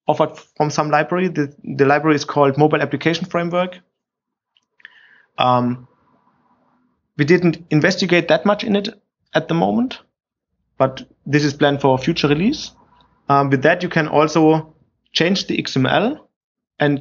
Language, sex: English, male